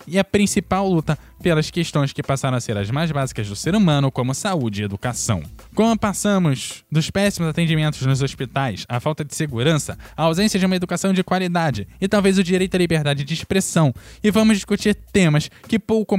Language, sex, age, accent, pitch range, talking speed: Portuguese, male, 10-29, Brazilian, 140-180 Hz, 195 wpm